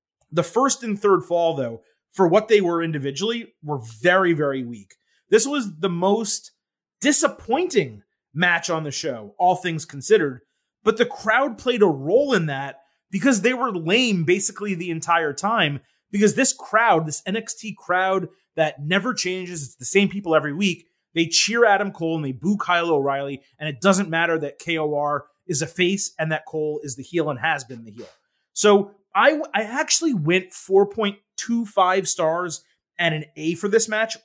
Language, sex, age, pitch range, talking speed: English, male, 30-49, 155-210 Hz, 175 wpm